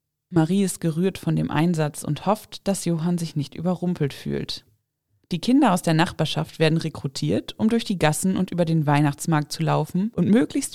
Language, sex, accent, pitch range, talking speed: German, female, German, 150-200 Hz, 185 wpm